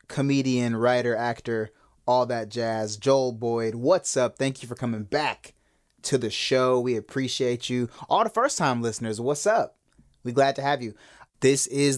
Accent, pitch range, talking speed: American, 110-140 Hz, 175 wpm